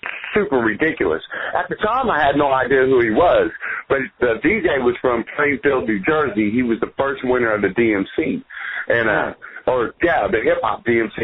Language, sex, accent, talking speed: English, male, American, 185 wpm